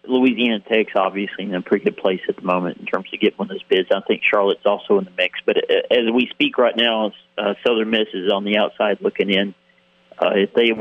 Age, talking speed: 40-59, 250 wpm